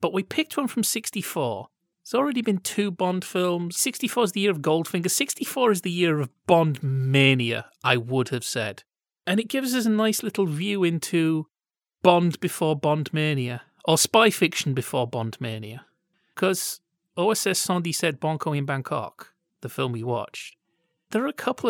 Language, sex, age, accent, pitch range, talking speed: English, male, 30-49, British, 135-185 Hz, 175 wpm